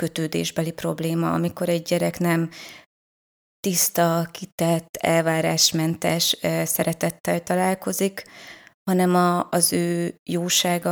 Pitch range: 165-185 Hz